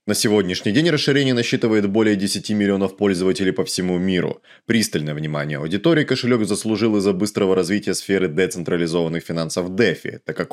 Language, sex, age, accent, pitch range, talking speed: Russian, male, 20-39, native, 90-120 Hz, 150 wpm